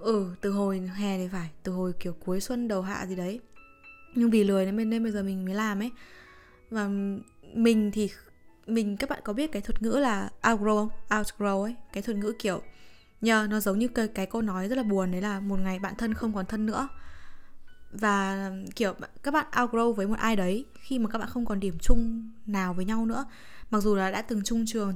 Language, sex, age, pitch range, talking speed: Vietnamese, female, 20-39, 200-235 Hz, 230 wpm